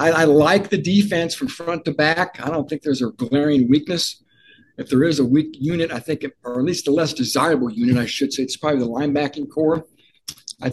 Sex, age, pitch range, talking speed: male, 60-79, 130-165 Hz, 225 wpm